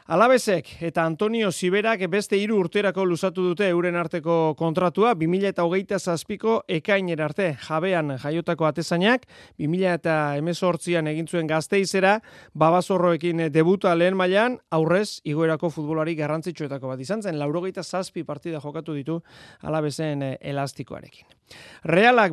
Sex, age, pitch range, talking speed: male, 30-49, 155-190 Hz, 130 wpm